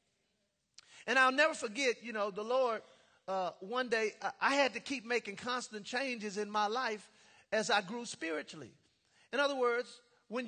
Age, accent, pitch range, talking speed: 40-59, American, 210-270 Hz, 165 wpm